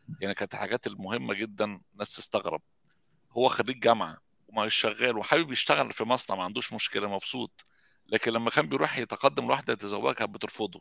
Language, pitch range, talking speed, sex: Arabic, 110-130 Hz, 155 wpm, male